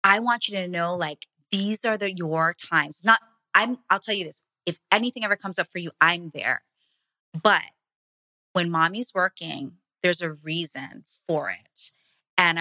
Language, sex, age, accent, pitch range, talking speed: English, female, 20-39, American, 155-195 Hz, 175 wpm